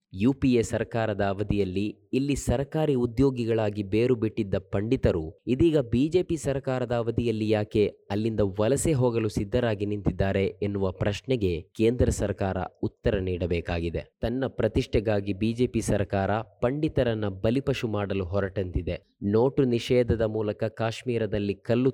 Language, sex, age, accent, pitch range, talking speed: Kannada, male, 20-39, native, 100-125 Hz, 110 wpm